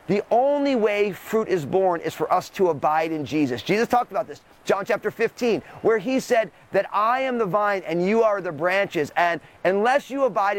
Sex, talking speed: male, 210 wpm